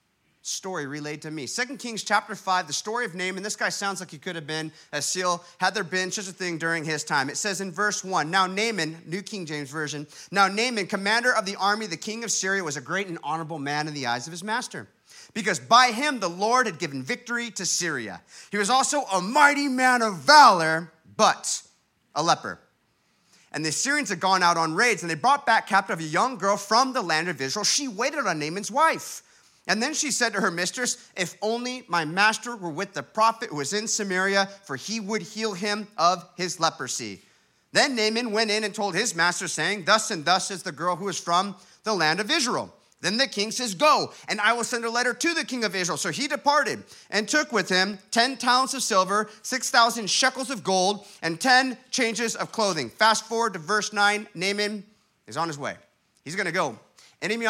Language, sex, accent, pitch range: English, male, American, 180-230 Hz